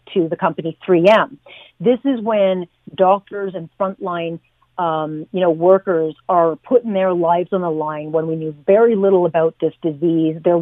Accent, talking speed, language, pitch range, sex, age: American, 170 wpm, English, 170-225 Hz, female, 40-59